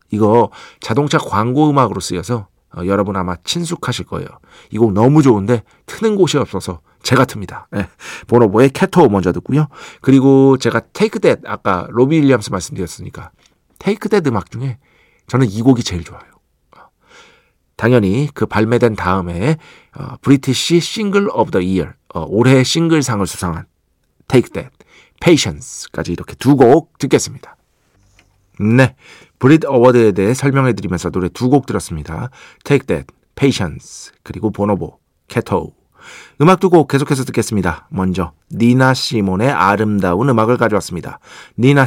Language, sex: Korean, male